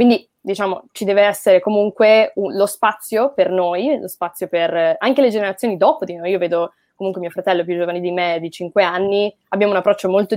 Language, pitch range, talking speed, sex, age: Italian, 175-215 Hz, 205 wpm, female, 20-39